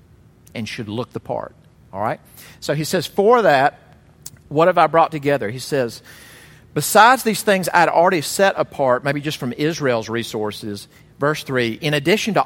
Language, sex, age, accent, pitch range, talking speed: English, male, 40-59, American, 115-155 Hz, 175 wpm